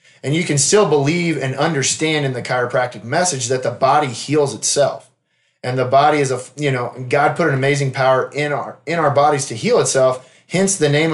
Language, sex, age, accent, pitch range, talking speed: English, male, 20-39, American, 130-160 Hz, 210 wpm